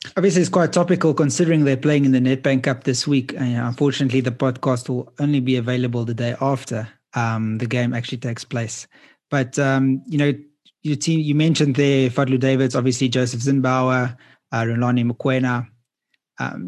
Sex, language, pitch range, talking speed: male, English, 125-145 Hz, 175 wpm